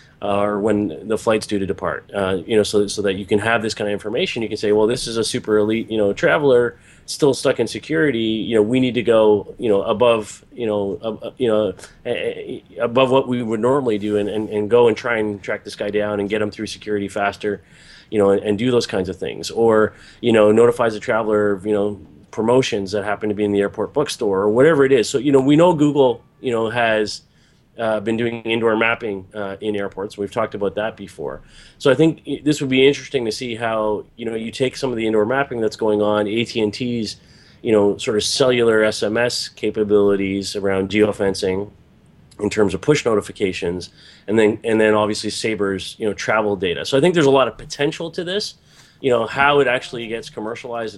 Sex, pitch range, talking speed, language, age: male, 105-125 Hz, 220 wpm, English, 30-49